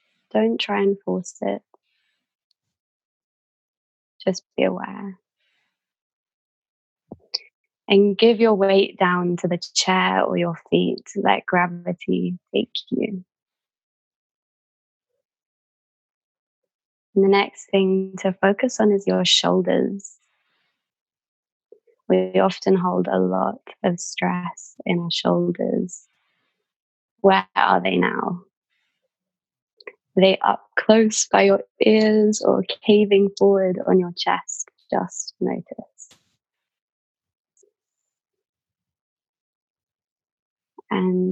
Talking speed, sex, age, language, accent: 90 wpm, female, 20-39, English, British